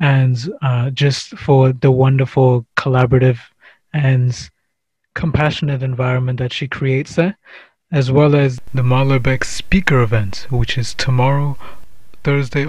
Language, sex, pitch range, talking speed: English, male, 130-155 Hz, 125 wpm